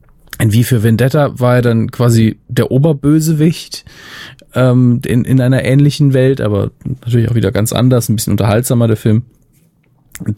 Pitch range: 110-135 Hz